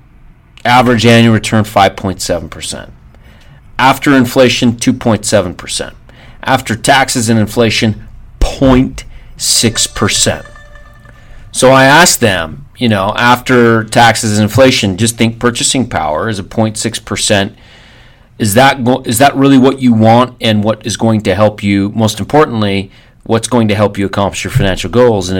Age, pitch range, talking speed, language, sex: 40-59, 105-125 Hz, 130 wpm, English, male